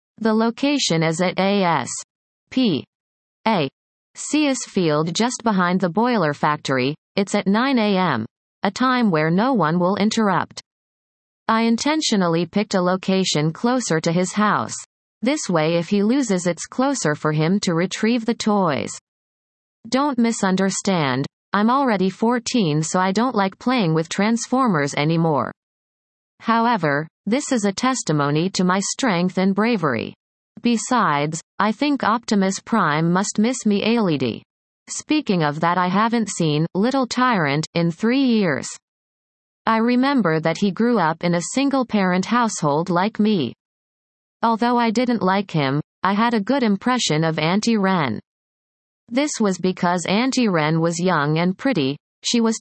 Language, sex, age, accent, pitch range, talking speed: English, female, 30-49, American, 170-235 Hz, 140 wpm